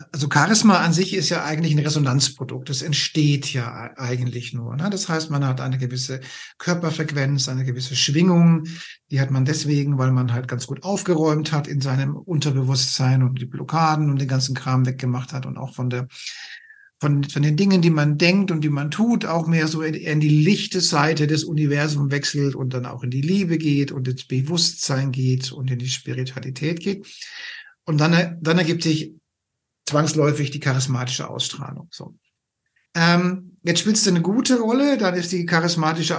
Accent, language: German, German